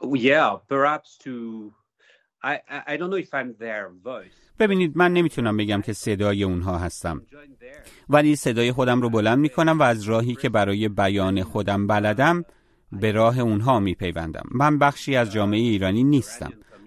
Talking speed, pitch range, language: 115 wpm, 105-140 Hz, Persian